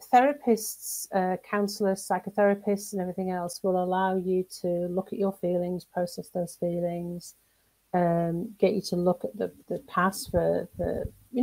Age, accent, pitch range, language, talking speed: 40-59, British, 175-215 Hz, English, 160 wpm